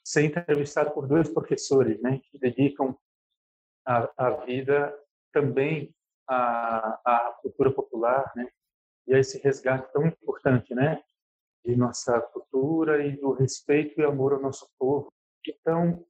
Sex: male